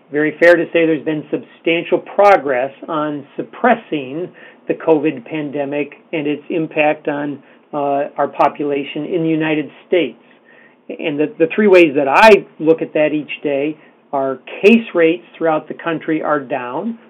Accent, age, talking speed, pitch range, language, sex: American, 40-59, 155 wpm, 150-185 Hz, English, male